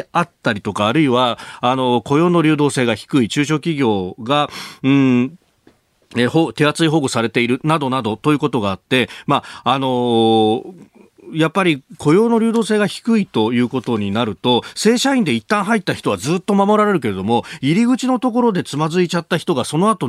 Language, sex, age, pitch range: Japanese, male, 40-59, 115-170 Hz